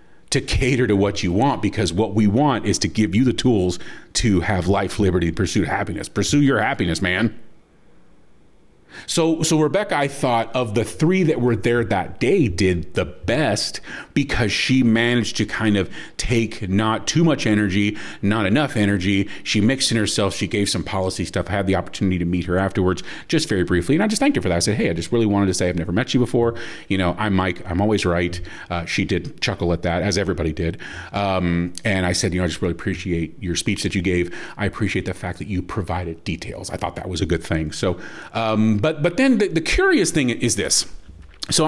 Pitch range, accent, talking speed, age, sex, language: 90-120 Hz, American, 225 wpm, 40-59, male, English